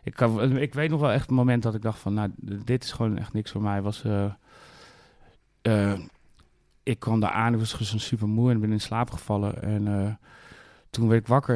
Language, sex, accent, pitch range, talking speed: Dutch, male, Dutch, 100-120 Hz, 220 wpm